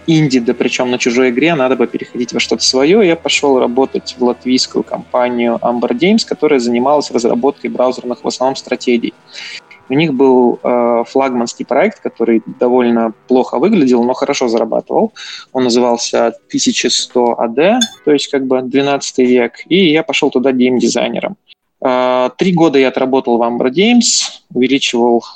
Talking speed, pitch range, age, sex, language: 145 wpm, 120-140 Hz, 20-39, male, Russian